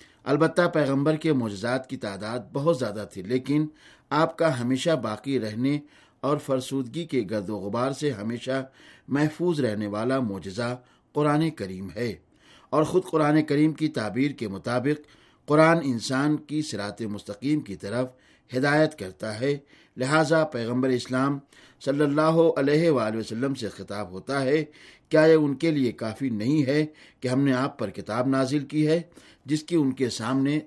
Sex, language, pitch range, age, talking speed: male, Urdu, 120-155 Hz, 50-69, 160 wpm